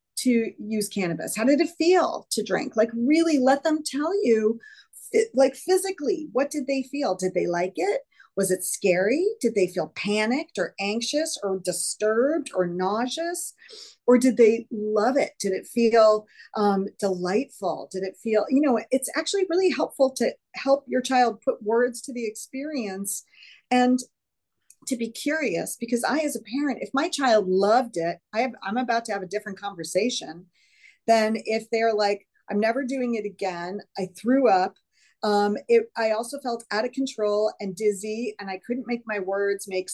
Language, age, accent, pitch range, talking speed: English, 40-59, American, 205-270 Hz, 175 wpm